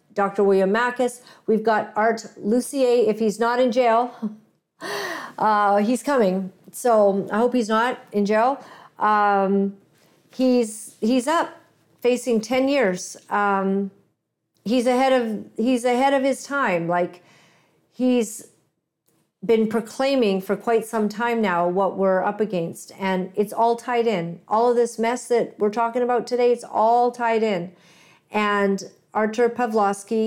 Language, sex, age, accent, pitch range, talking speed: English, female, 50-69, American, 195-235 Hz, 145 wpm